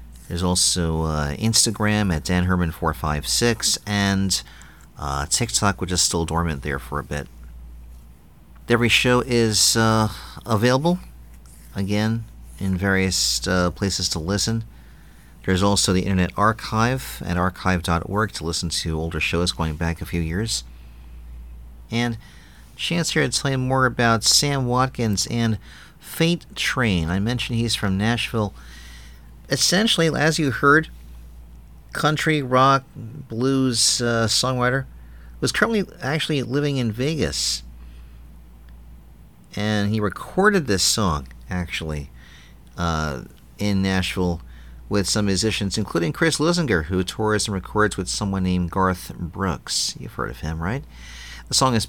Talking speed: 130 wpm